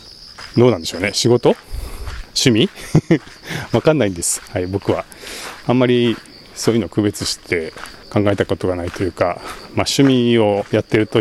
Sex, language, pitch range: male, Japanese, 90-115 Hz